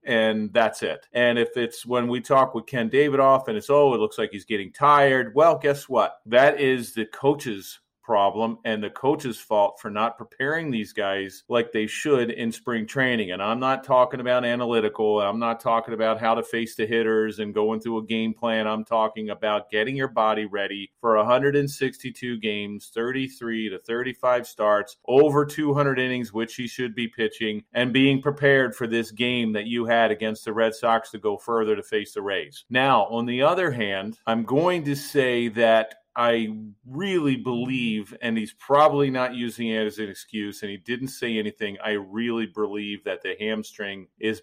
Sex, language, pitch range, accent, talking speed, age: male, English, 110-130 Hz, American, 190 wpm, 30-49